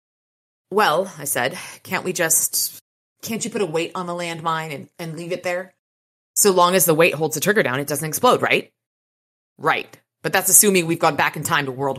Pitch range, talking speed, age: 130-170 Hz, 210 wpm, 30-49